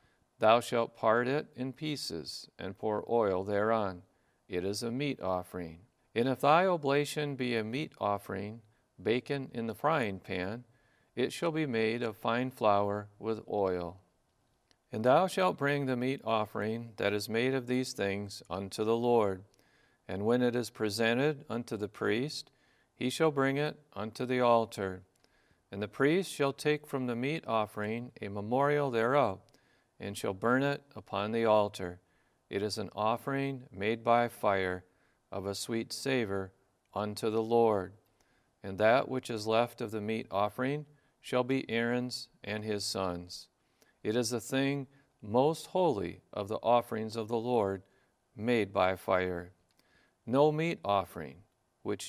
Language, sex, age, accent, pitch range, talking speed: English, male, 50-69, American, 100-130 Hz, 155 wpm